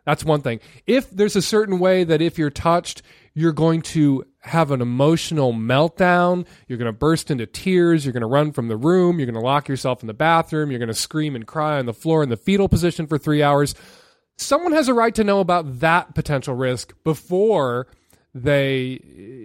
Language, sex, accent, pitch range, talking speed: English, male, American, 130-170 Hz, 210 wpm